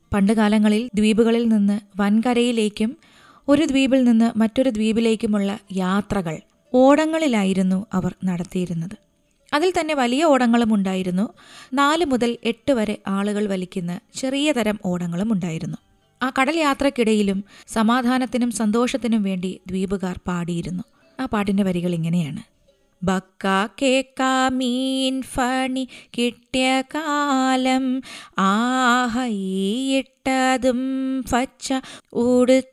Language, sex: Malayalam, female